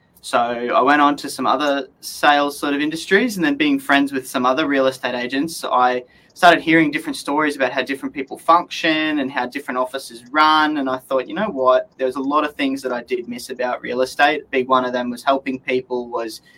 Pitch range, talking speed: 125-150 Hz, 225 wpm